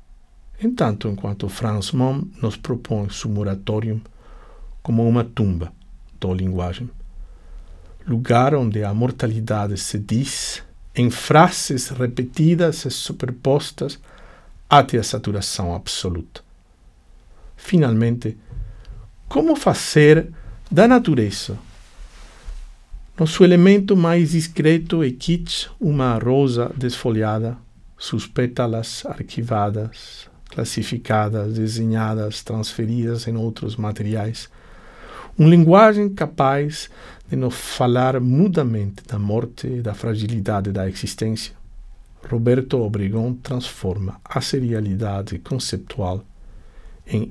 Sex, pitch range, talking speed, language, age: male, 105-135 Hz, 95 wpm, Portuguese, 60-79